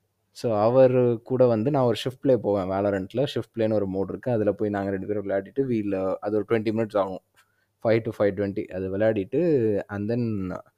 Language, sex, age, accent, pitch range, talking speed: Tamil, male, 20-39, native, 100-120 Hz, 185 wpm